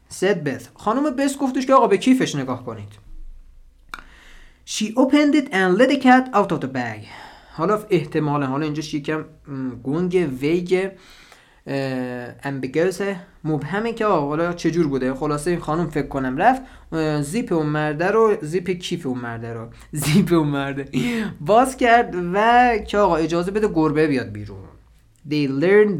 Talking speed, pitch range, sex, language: 145 wpm, 135-185 Hz, male, Persian